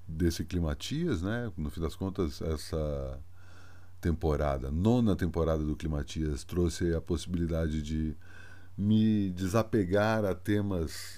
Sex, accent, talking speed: male, Brazilian, 105 wpm